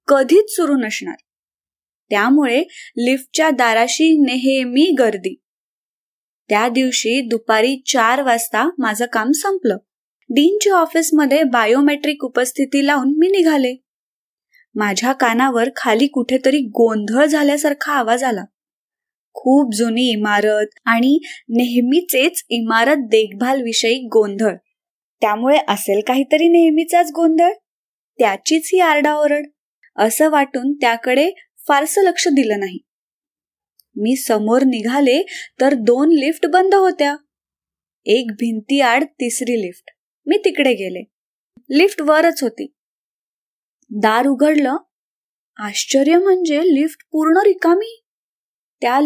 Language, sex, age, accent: Marathi, female, 20-39, native